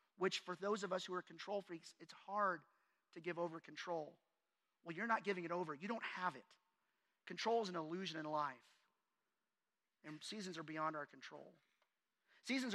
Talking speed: 180 wpm